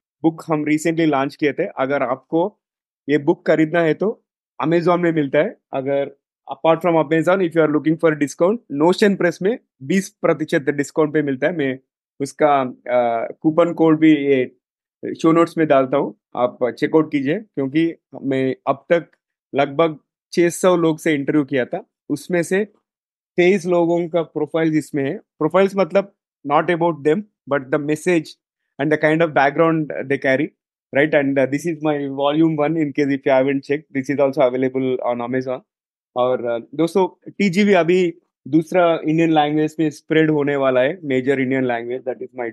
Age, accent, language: 30-49, native, Hindi